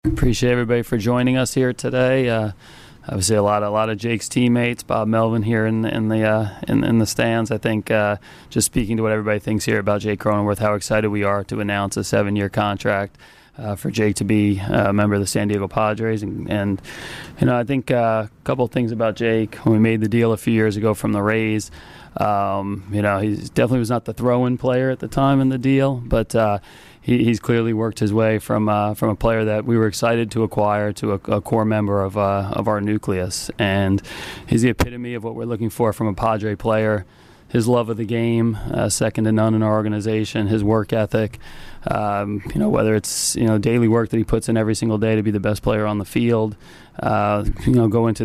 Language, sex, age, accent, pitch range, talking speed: English, male, 30-49, American, 105-115 Hz, 235 wpm